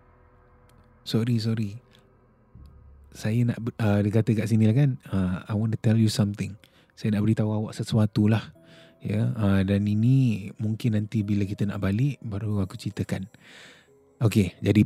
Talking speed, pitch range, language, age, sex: 160 wpm, 105-130 Hz, Malay, 20-39, male